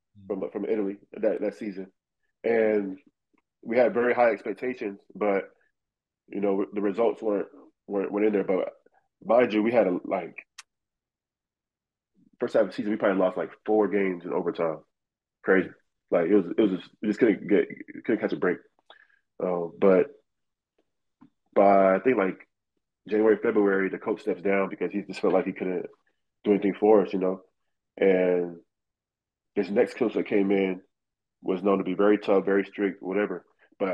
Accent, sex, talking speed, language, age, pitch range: American, male, 175 wpm, English, 20-39, 95-105 Hz